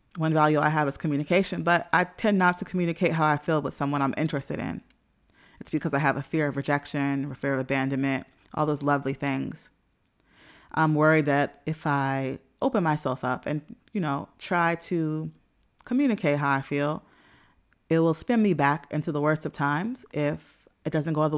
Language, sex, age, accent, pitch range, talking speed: English, female, 30-49, American, 140-170 Hz, 190 wpm